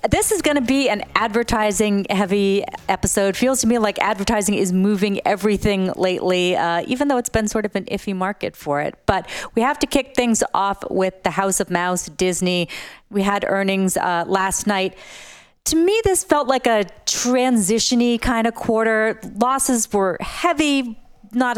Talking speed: 170 wpm